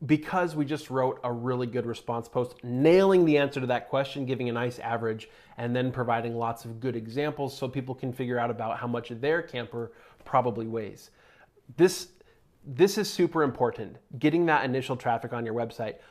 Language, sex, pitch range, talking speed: English, male, 125-165 Hz, 190 wpm